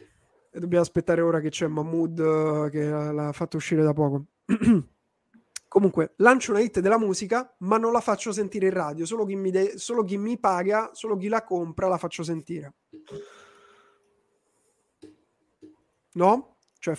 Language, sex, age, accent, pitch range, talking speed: Italian, male, 20-39, native, 170-225 Hz, 140 wpm